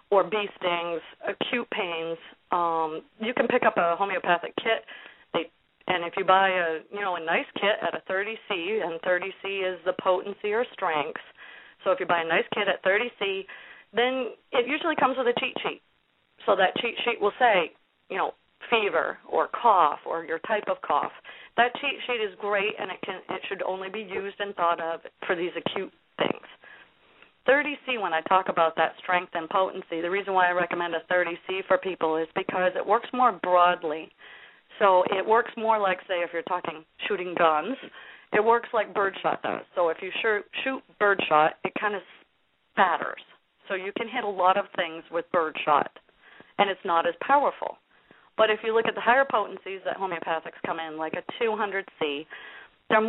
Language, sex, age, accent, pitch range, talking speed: English, female, 40-59, American, 175-225 Hz, 190 wpm